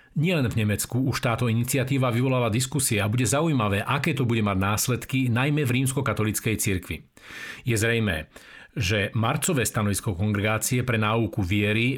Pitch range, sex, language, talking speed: 105-130 Hz, male, Slovak, 145 wpm